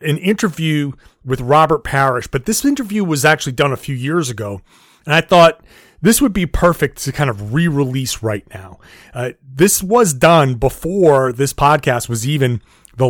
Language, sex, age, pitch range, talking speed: English, male, 30-49, 130-165 Hz, 175 wpm